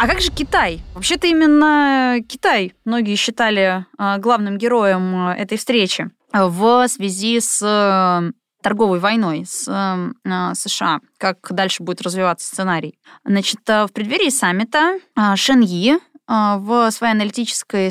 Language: Russian